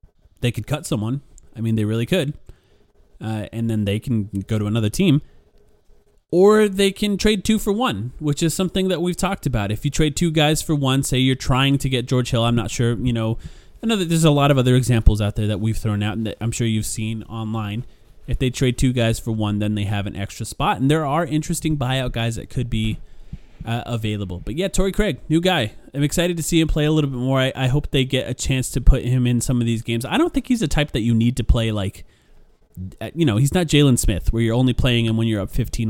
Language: English